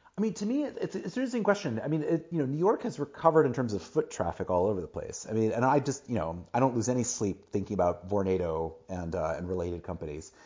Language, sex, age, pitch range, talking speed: English, male, 30-49, 95-160 Hz, 265 wpm